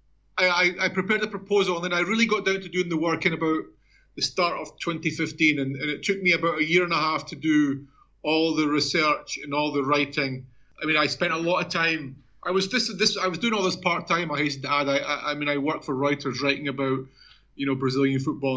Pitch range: 140-175 Hz